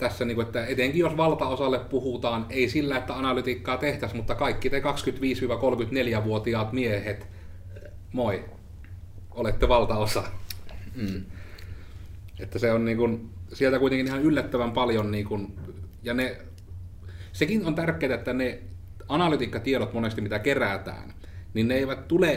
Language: Finnish